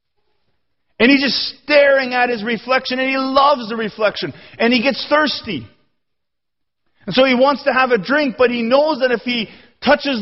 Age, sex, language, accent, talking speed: 40-59, male, English, American, 180 wpm